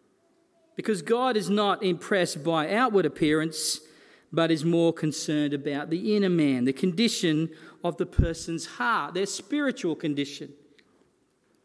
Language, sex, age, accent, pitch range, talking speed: English, male, 40-59, Australian, 160-220 Hz, 130 wpm